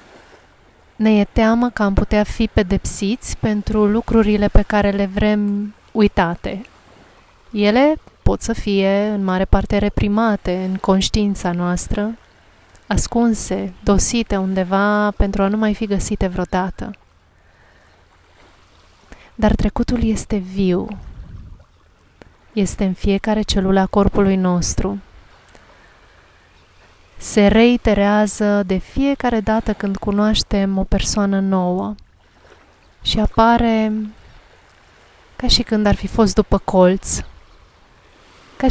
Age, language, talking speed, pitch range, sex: 30-49, Romanian, 105 wpm, 185-215 Hz, female